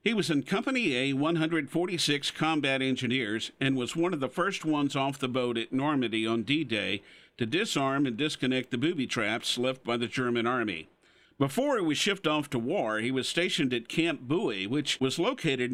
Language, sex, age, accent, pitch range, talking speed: English, male, 50-69, American, 125-160 Hz, 195 wpm